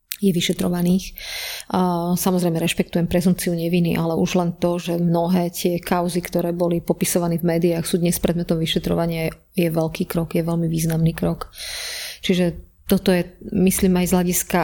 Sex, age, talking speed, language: female, 30-49, 150 wpm, Slovak